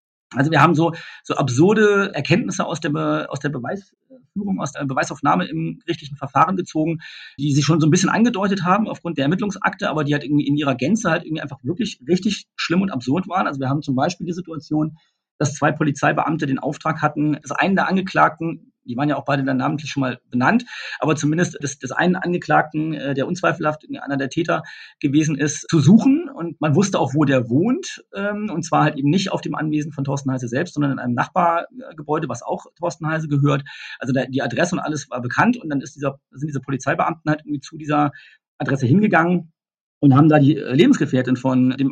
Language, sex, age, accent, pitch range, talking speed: German, male, 40-59, German, 140-170 Hz, 205 wpm